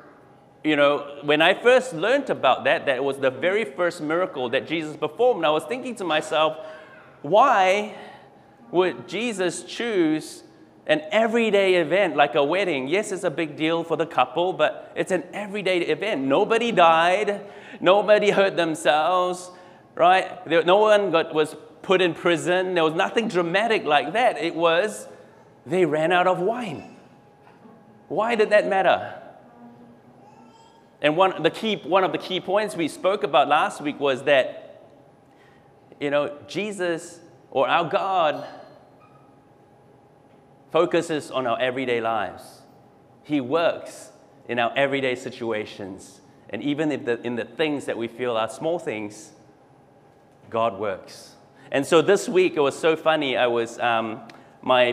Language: English